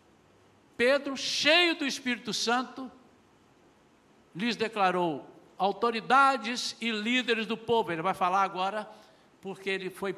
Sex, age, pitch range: male, 60-79, 185-255 Hz